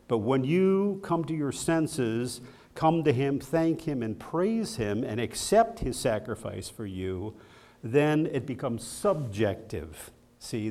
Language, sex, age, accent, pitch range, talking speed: English, male, 50-69, American, 115-165 Hz, 145 wpm